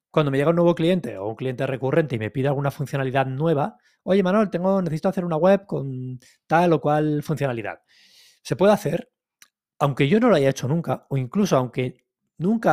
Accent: Spanish